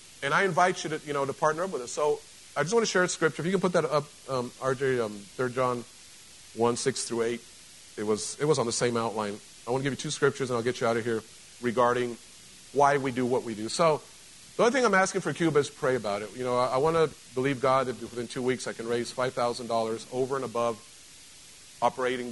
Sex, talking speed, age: male, 260 wpm, 40-59